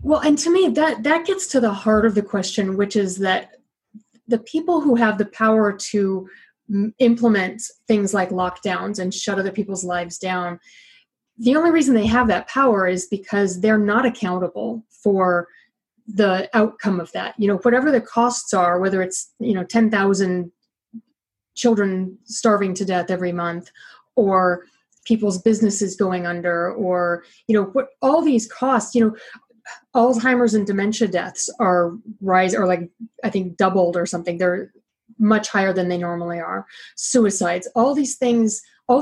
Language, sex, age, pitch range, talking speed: English, female, 30-49, 190-235 Hz, 165 wpm